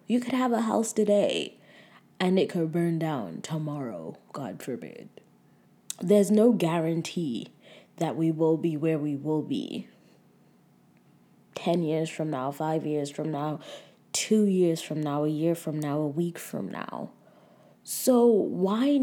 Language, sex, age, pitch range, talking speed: English, female, 20-39, 165-210 Hz, 150 wpm